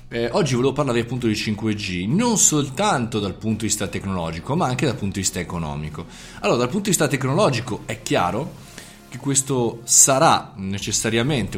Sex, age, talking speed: male, 20-39, 170 wpm